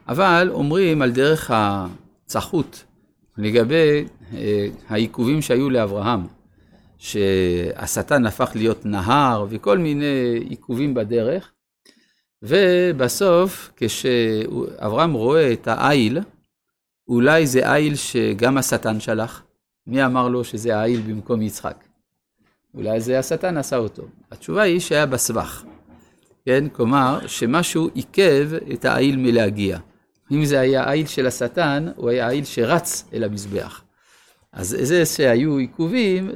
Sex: male